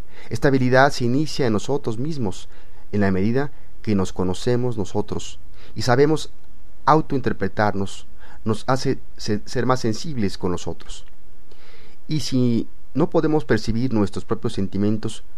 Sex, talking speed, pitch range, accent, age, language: male, 125 wpm, 100-125 Hz, Mexican, 40-59, Spanish